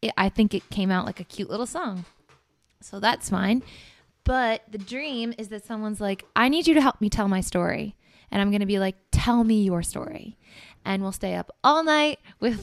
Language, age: English, 20-39